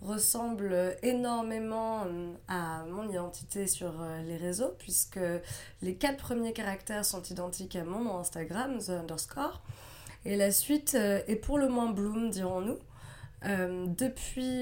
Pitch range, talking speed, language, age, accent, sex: 165-210 Hz, 125 wpm, French, 20-39, French, female